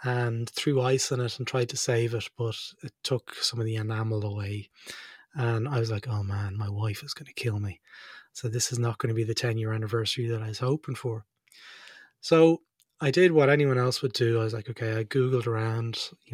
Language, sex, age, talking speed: English, male, 20-39, 230 wpm